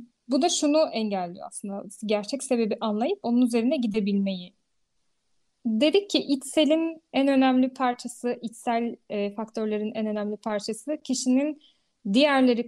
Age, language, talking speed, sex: 10-29, Turkish, 115 wpm, female